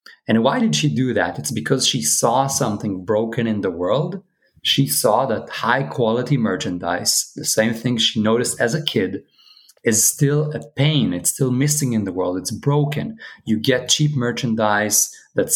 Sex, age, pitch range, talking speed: male, 30-49, 105-130 Hz, 175 wpm